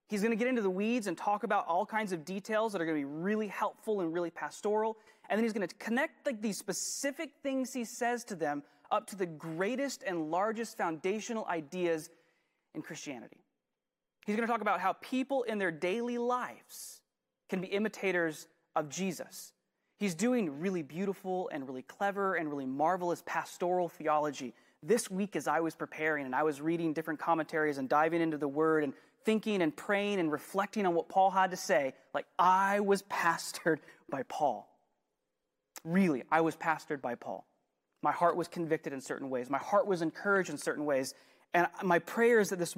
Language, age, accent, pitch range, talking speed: English, 20-39, American, 160-215 Hz, 190 wpm